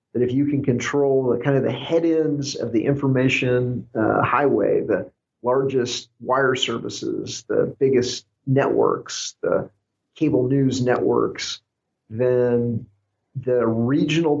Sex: male